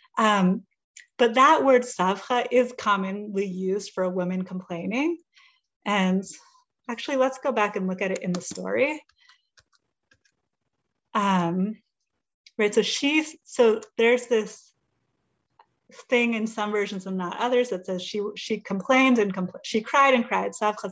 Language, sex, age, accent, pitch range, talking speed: English, female, 30-49, American, 200-290 Hz, 145 wpm